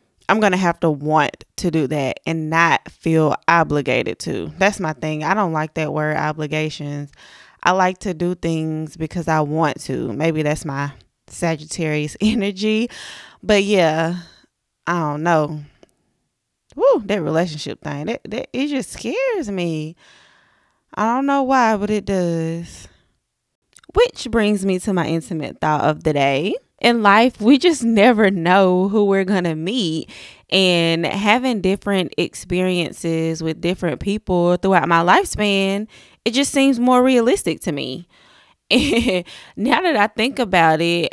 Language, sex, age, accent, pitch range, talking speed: English, female, 20-39, American, 160-210 Hz, 150 wpm